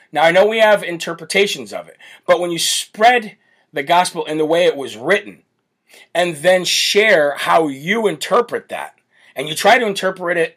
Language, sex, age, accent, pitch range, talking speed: English, male, 40-59, American, 150-190 Hz, 185 wpm